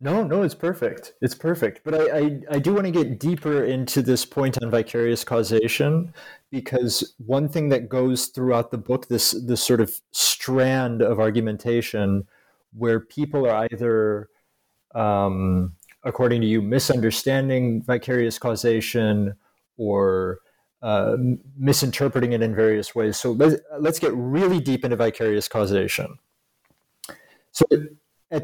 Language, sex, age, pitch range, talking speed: English, male, 30-49, 110-135 Hz, 140 wpm